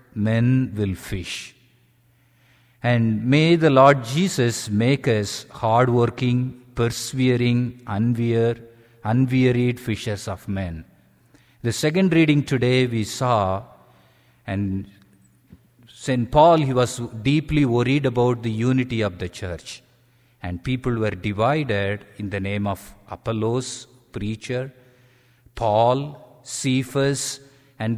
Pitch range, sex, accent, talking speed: 105-130 Hz, male, Indian, 105 wpm